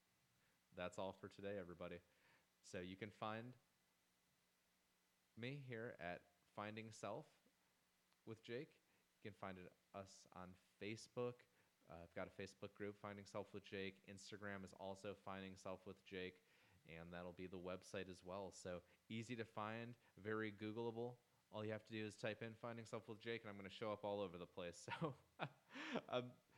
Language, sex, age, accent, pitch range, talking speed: English, male, 30-49, American, 95-120 Hz, 170 wpm